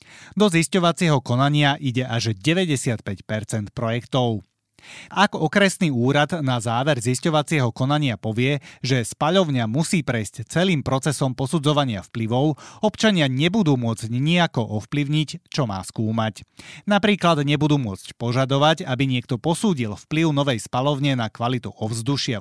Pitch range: 115-160 Hz